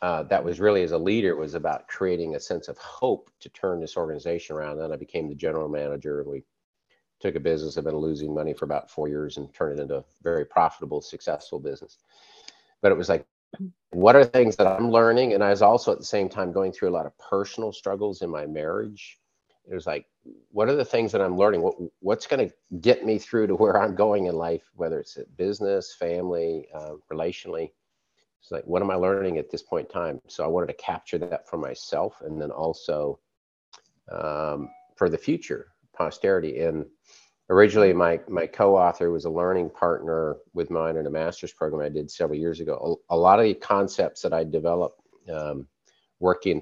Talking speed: 205 wpm